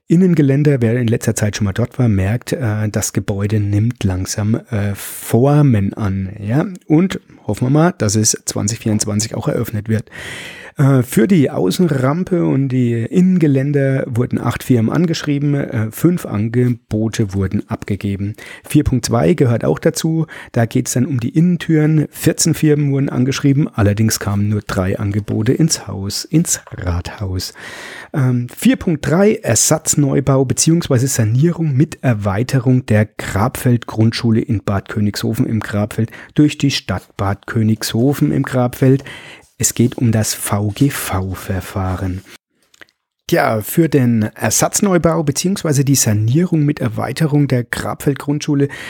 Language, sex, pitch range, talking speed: German, male, 110-145 Hz, 125 wpm